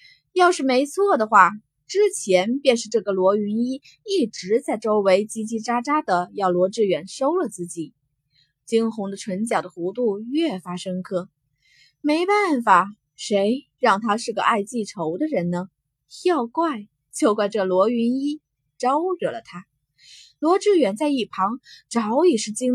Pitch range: 190-290 Hz